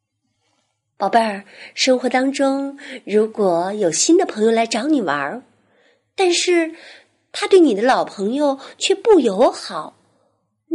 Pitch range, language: 195-275 Hz, Chinese